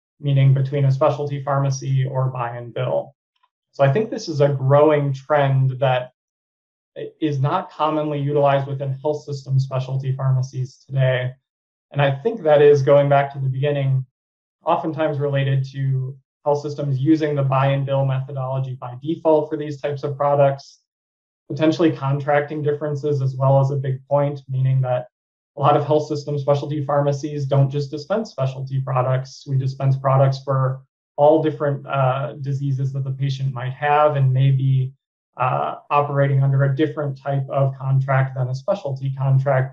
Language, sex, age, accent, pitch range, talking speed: English, male, 20-39, American, 135-150 Hz, 160 wpm